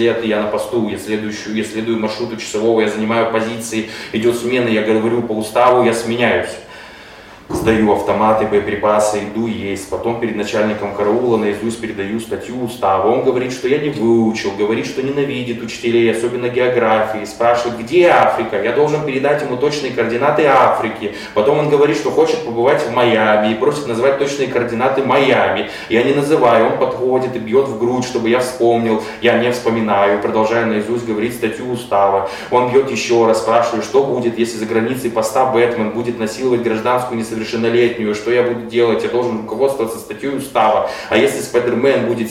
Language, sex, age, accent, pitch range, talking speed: Russian, male, 20-39, native, 110-130 Hz, 165 wpm